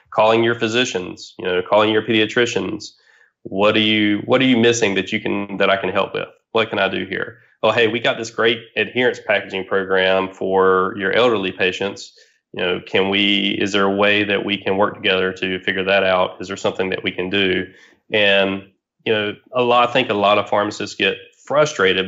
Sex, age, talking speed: male, 20-39, 215 wpm